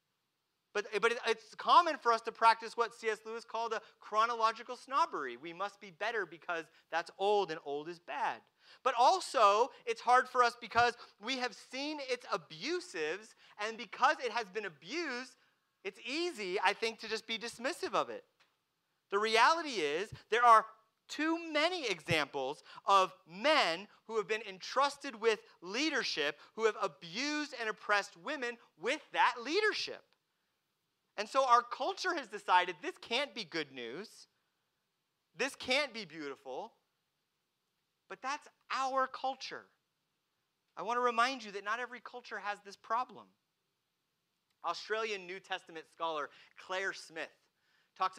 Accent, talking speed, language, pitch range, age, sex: American, 145 wpm, English, 190-255 Hz, 30-49, male